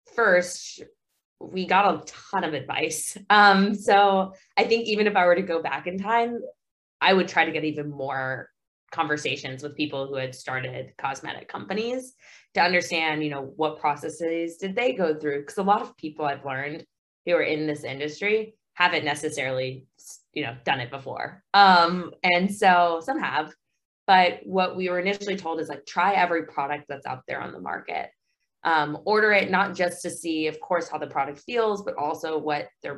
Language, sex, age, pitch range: English, female, 20-39, 150-195 Hz